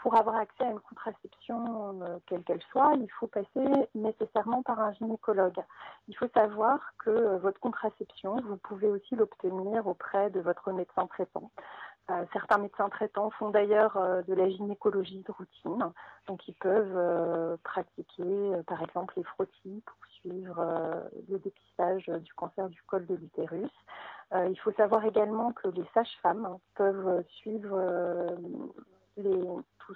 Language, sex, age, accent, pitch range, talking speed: French, female, 40-59, French, 185-225 Hz, 150 wpm